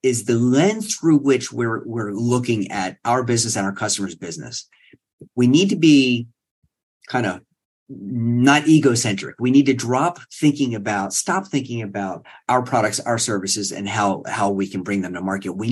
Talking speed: 175 wpm